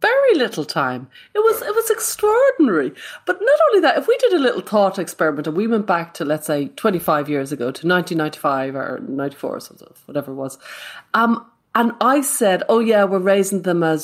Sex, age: female, 30-49